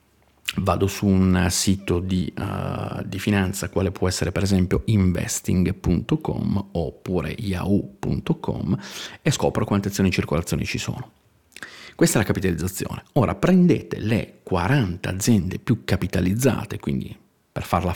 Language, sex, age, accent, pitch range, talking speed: Italian, male, 40-59, native, 95-125 Hz, 125 wpm